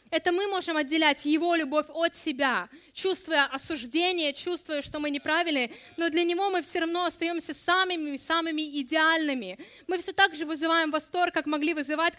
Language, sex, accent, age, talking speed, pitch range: Russian, female, native, 20-39, 160 wpm, 250-315 Hz